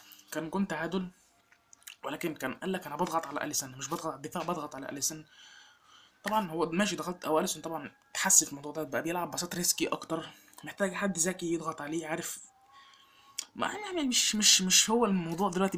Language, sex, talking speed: Arabic, male, 185 wpm